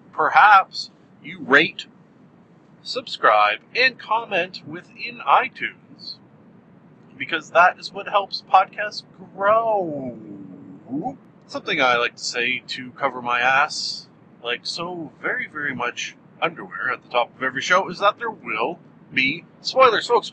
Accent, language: American, English